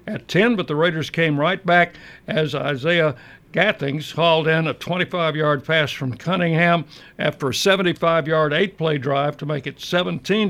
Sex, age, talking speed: male, 60-79, 155 wpm